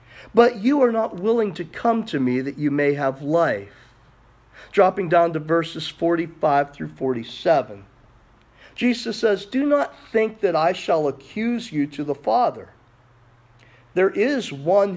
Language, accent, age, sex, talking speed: English, American, 50-69, male, 150 wpm